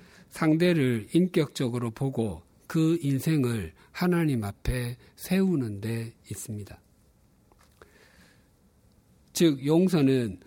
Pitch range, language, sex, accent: 115-160 Hz, Korean, male, native